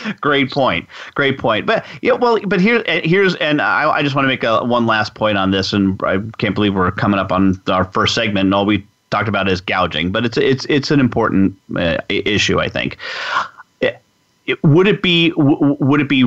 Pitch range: 105-140 Hz